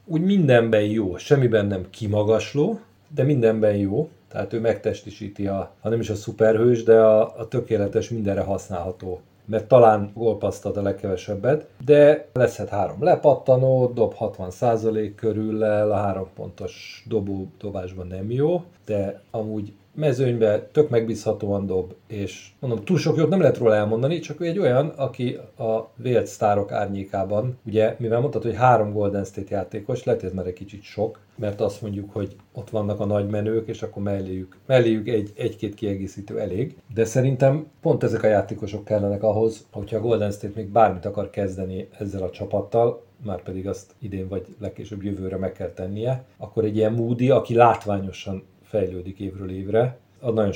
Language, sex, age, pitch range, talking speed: Hungarian, male, 40-59, 100-115 Hz, 160 wpm